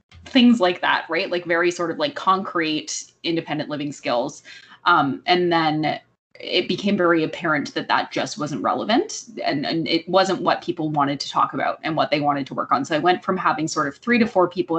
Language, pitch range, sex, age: English, 155-185 Hz, female, 20-39